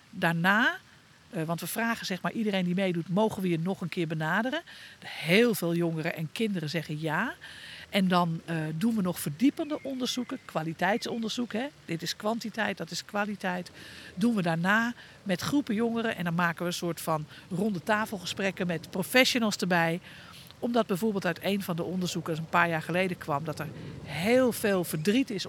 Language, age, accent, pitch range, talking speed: Dutch, 50-69, Dutch, 165-220 Hz, 175 wpm